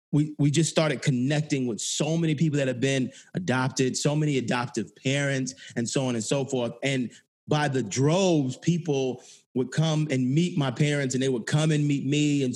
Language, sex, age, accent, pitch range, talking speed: English, male, 30-49, American, 130-160 Hz, 200 wpm